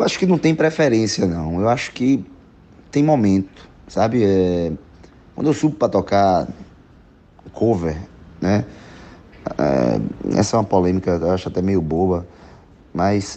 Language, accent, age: Portuguese, Brazilian, 30-49